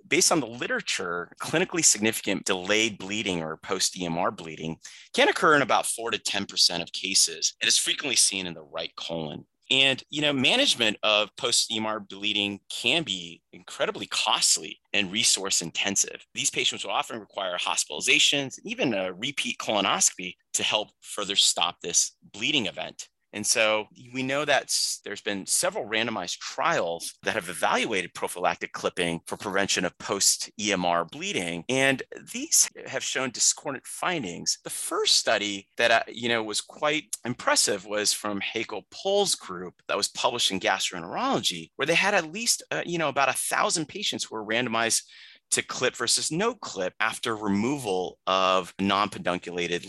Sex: male